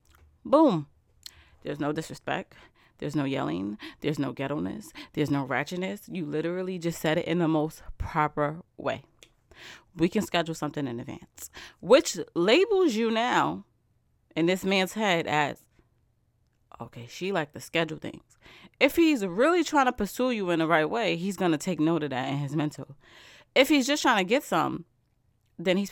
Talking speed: 170 wpm